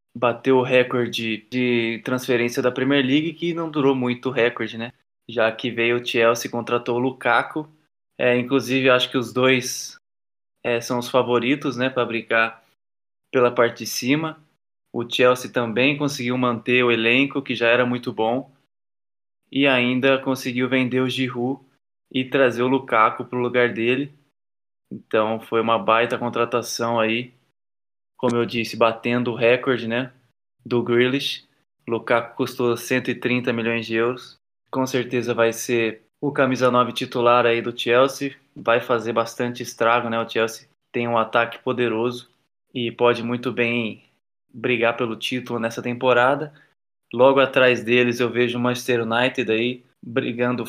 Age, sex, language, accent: 20-39, male, Portuguese, Brazilian